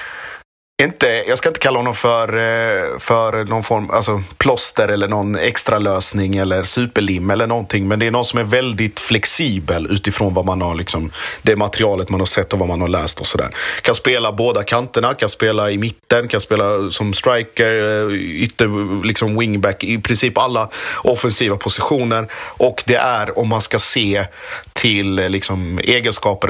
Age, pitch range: 30-49, 100-115 Hz